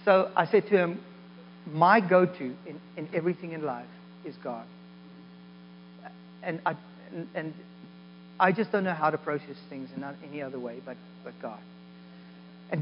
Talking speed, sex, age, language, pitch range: 155 wpm, male, 40-59, English, 145-200 Hz